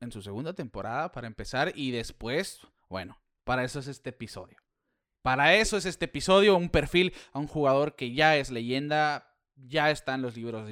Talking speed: 190 wpm